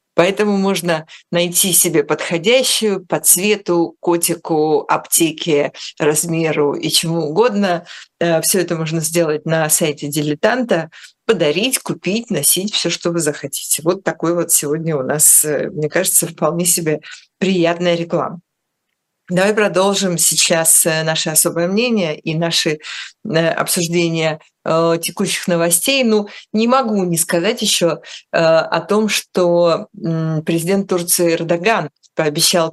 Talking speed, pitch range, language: 115 wpm, 160-190 Hz, Russian